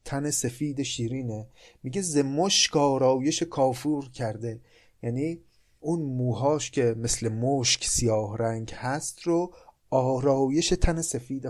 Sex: male